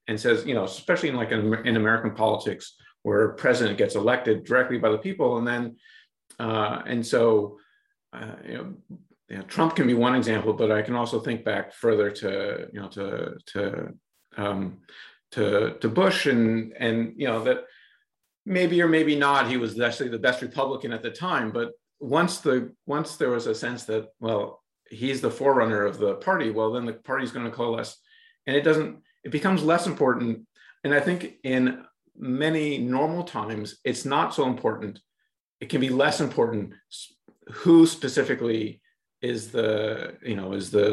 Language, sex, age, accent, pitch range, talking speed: English, male, 50-69, American, 110-145 Hz, 175 wpm